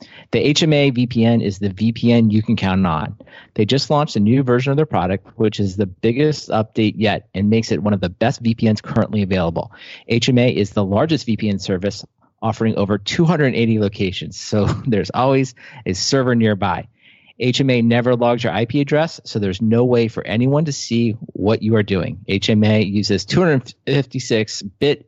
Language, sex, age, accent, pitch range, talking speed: English, male, 40-59, American, 105-130 Hz, 170 wpm